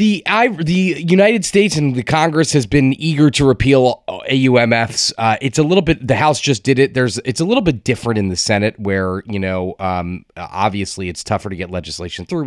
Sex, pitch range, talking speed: male, 95-125 Hz, 210 wpm